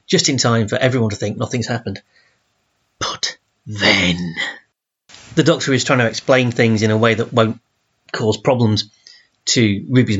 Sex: male